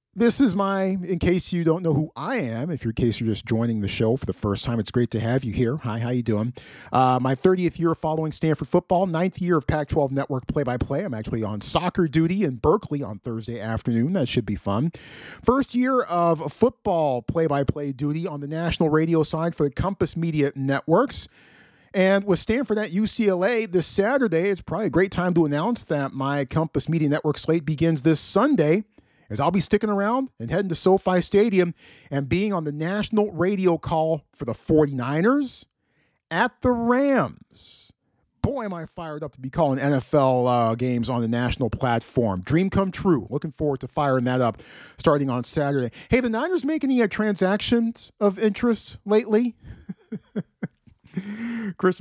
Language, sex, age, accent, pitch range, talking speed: English, male, 40-59, American, 130-195 Hz, 185 wpm